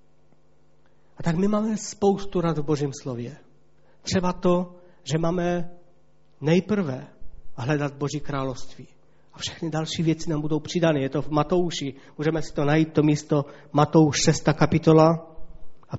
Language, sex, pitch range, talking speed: Czech, male, 135-170 Hz, 145 wpm